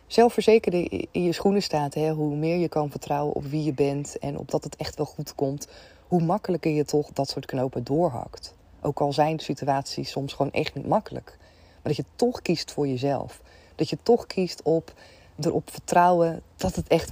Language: Dutch